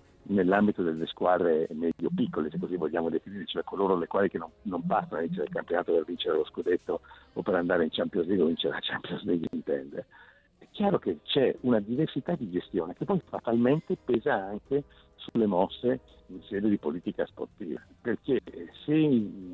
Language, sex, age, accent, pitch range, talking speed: Italian, male, 60-79, native, 95-130 Hz, 180 wpm